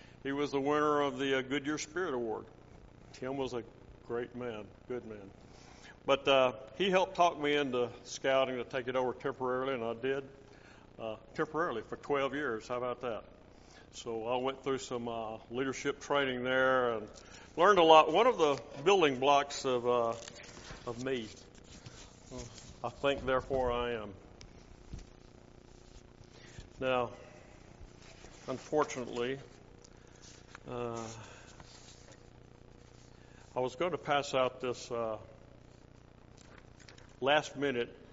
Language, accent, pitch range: English, American, 120-140 Hz